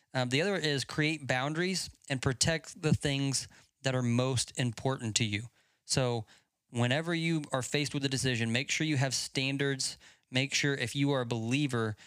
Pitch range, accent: 120-145 Hz, American